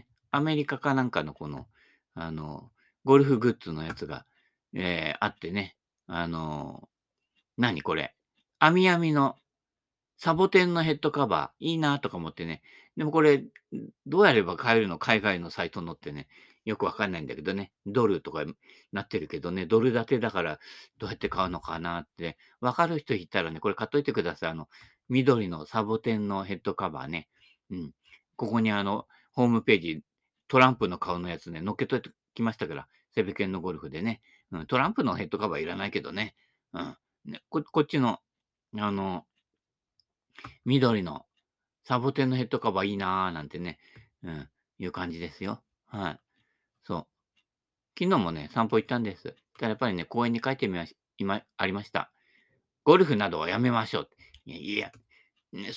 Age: 50-69